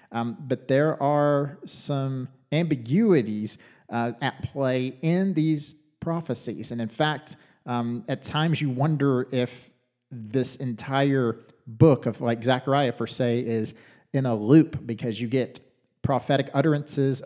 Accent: American